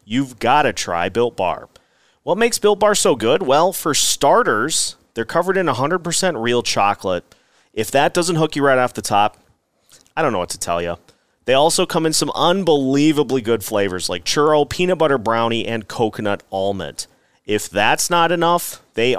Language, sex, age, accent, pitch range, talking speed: English, male, 30-49, American, 110-160 Hz, 180 wpm